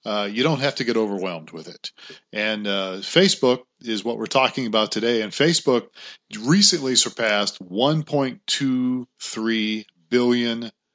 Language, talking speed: English, 150 wpm